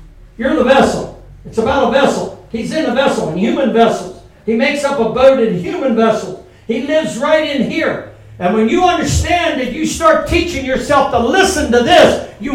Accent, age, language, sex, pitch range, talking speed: American, 60-79, English, male, 205-275 Hz, 190 wpm